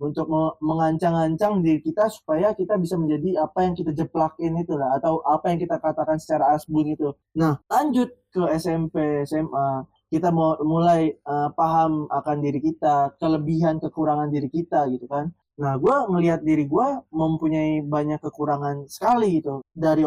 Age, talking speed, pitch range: 20-39, 155 wpm, 145-170 Hz